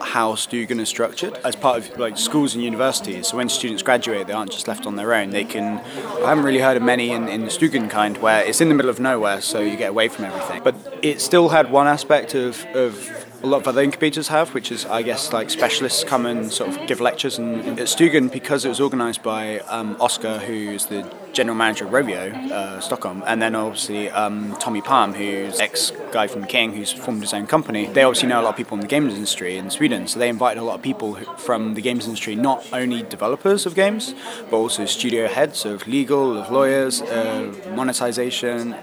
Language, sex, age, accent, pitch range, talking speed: Russian, male, 20-39, British, 110-140 Hz, 225 wpm